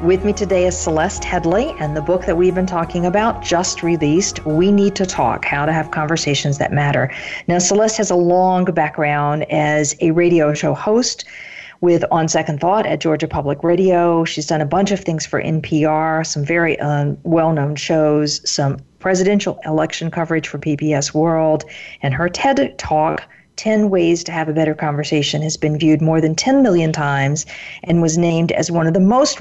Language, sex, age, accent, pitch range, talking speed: English, female, 50-69, American, 150-175 Hz, 190 wpm